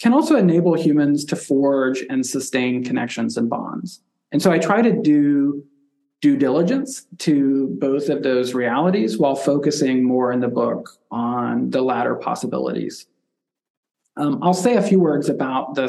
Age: 40-59